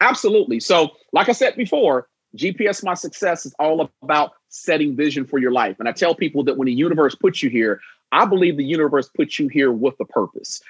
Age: 40-59